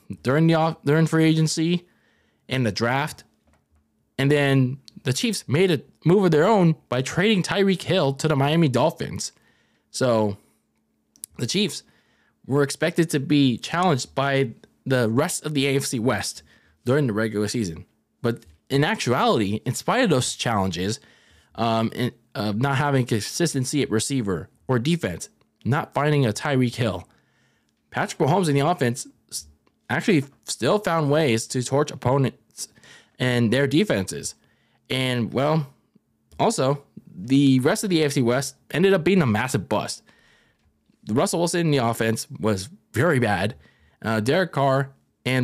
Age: 20-39